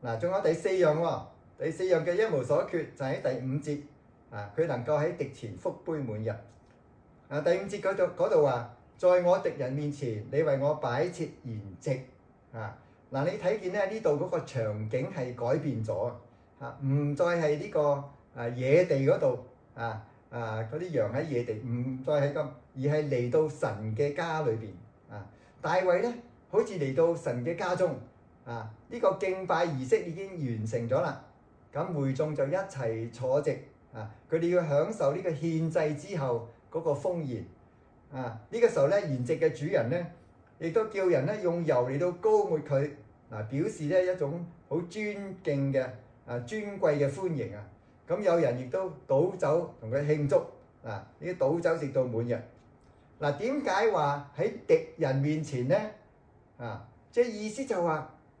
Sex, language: male, English